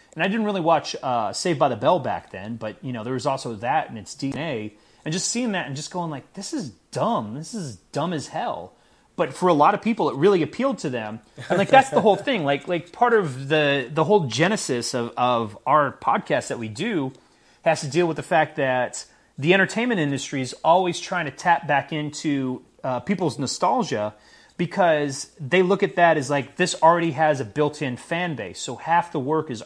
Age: 30-49